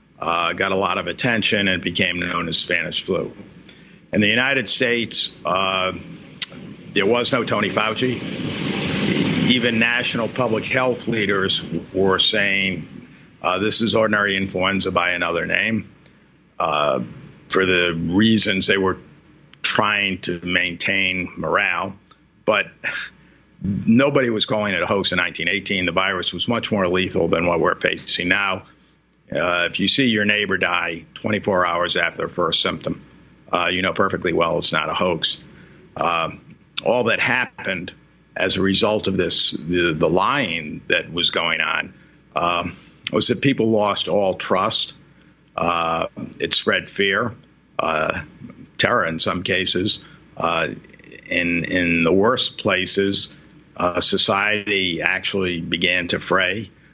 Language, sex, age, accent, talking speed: English, male, 50-69, American, 140 wpm